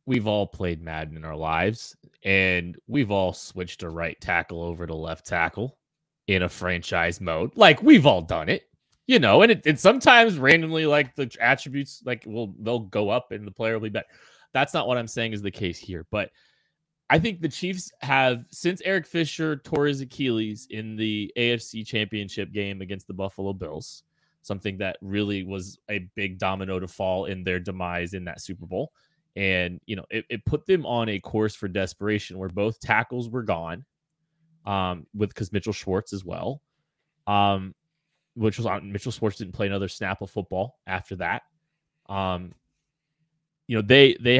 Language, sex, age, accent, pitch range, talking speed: English, male, 20-39, American, 95-135 Hz, 185 wpm